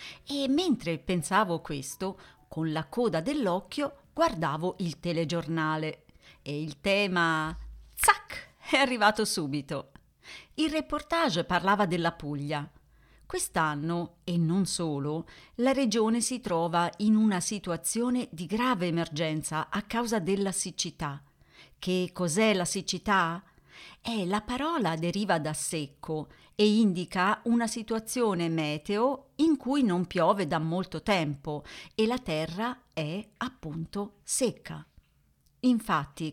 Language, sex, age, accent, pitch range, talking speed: Italian, female, 40-59, native, 160-225 Hz, 115 wpm